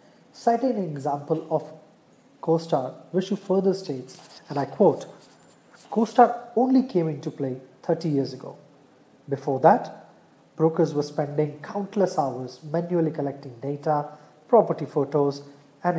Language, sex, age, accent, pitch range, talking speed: English, male, 30-49, Indian, 140-165 Hz, 120 wpm